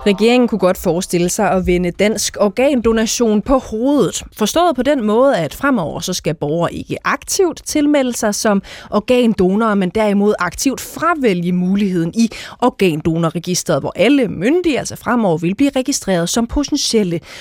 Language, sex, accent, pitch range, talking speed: Danish, female, native, 175-240 Hz, 150 wpm